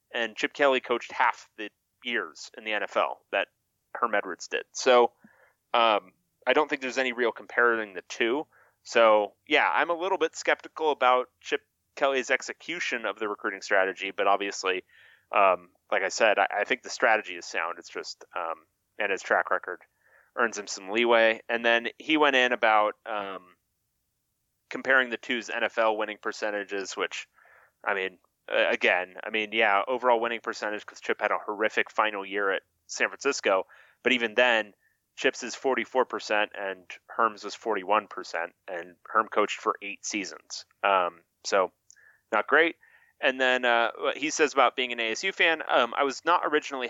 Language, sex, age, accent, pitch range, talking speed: English, male, 30-49, American, 105-130 Hz, 170 wpm